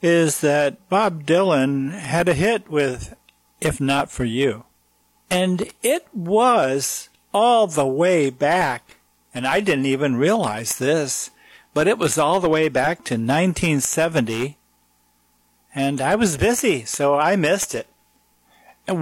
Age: 60-79